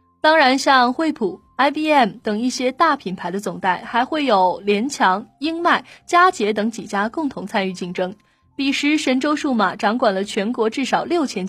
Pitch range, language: 205-290 Hz, Chinese